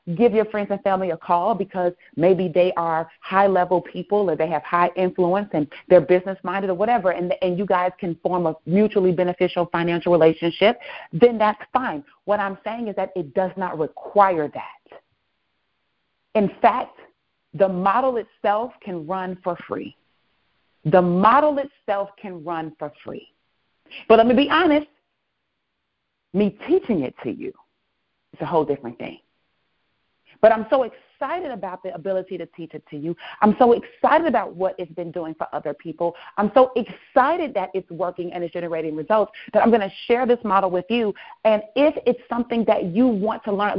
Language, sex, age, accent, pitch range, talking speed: English, female, 40-59, American, 180-225 Hz, 180 wpm